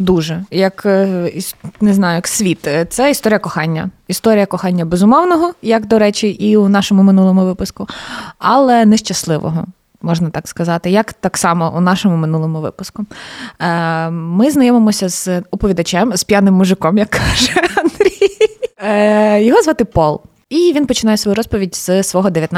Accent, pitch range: native, 175-230 Hz